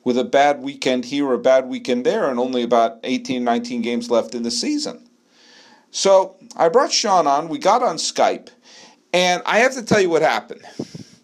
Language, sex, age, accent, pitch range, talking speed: English, male, 50-69, American, 125-205 Hz, 190 wpm